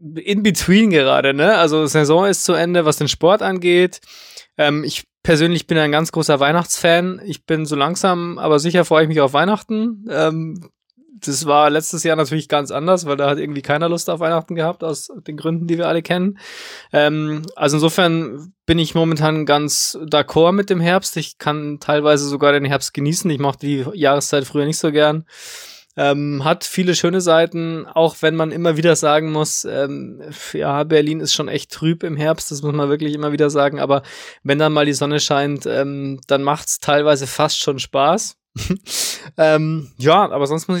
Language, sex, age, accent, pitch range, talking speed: German, male, 20-39, German, 145-165 Hz, 190 wpm